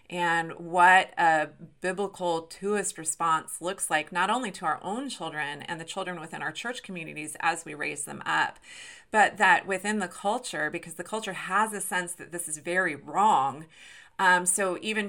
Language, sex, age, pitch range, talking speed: English, female, 30-49, 160-200 Hz, 180 wpm